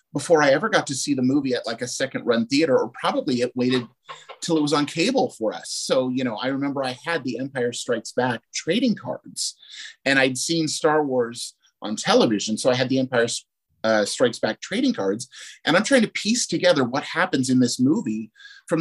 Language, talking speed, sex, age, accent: English, 215 wpm, male, 30-49, American